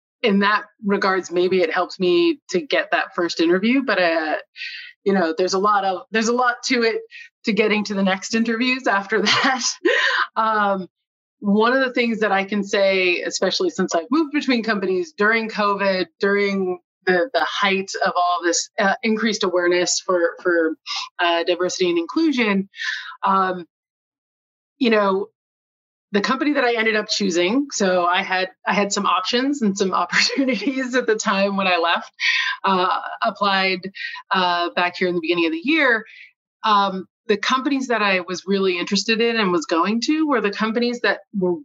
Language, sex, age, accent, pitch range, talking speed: English, female, 30-49, American, 185-240 Hz, 175 wpm